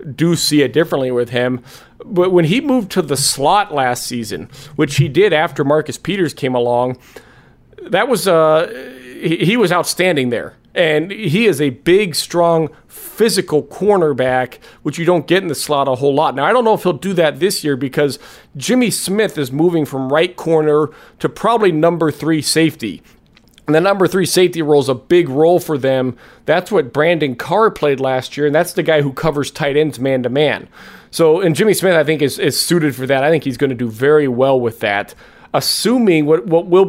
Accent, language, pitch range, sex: American, English, 135-175 Hz, male